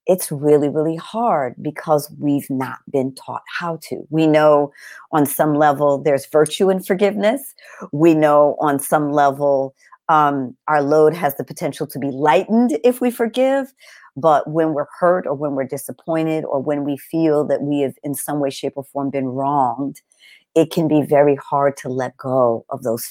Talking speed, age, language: 180 wpm, 50-69, English